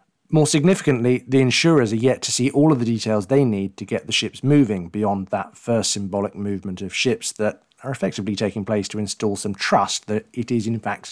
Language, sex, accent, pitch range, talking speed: English, male, British, 105-130 Hz, 215 wpm